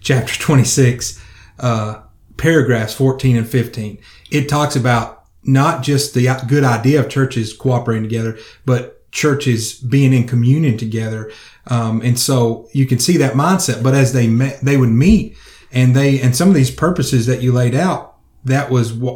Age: 30-49